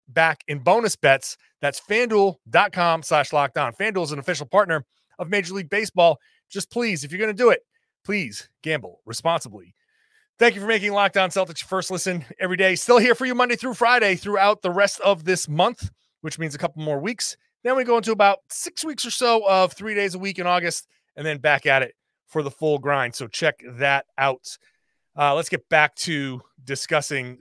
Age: 30-49